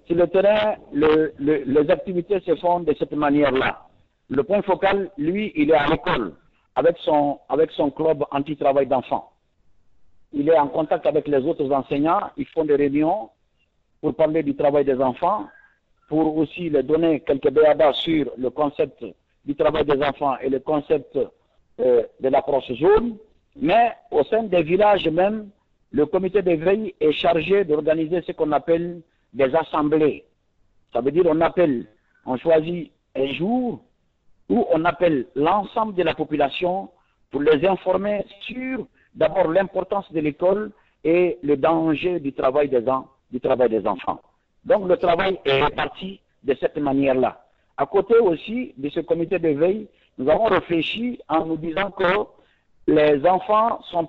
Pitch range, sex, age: 145-195 Hz, male, 60-79